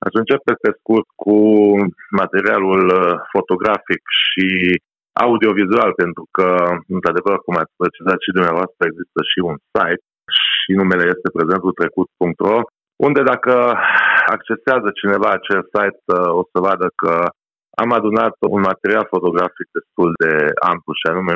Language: Romanian